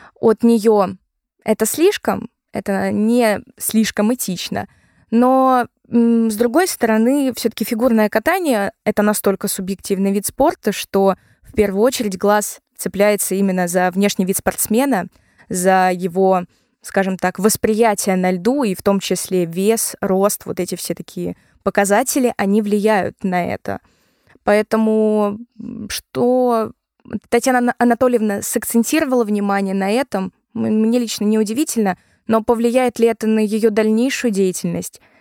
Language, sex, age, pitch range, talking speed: Russian, female, 20-39, 195-230 Hz, 125 wpm